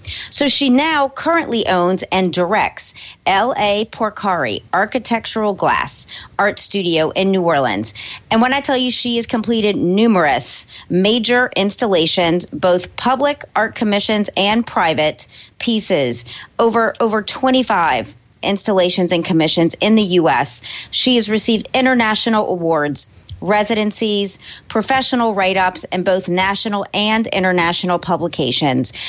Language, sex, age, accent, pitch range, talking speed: English, female, 40-59, American, 180-230 Hz, 125 wpm